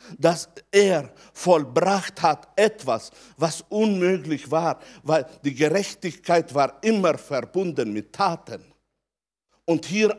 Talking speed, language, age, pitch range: 105 wpm, German, 60-79, 165-250 Hz